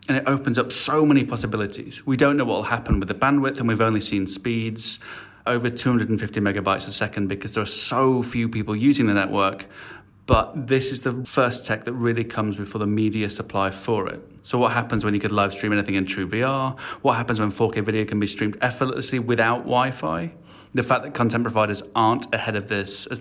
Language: English